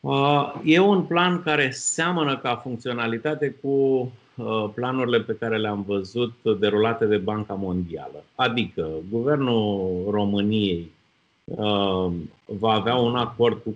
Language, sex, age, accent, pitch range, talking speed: Romanian, male, 30-49, native, 100-140 Hz, 110 wpm